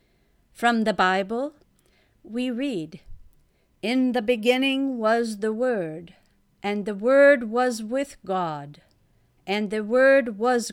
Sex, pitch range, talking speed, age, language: female, 190-270 Hz, 115 wpm, 50-69, English